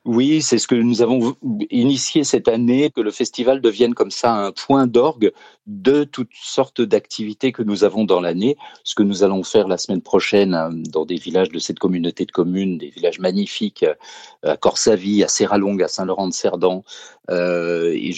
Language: French